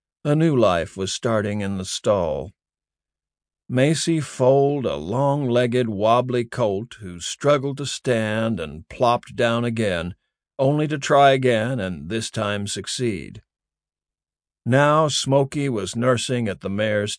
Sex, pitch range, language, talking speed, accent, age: male, 100-135 Hz, English, 130 wpm, American, 50-69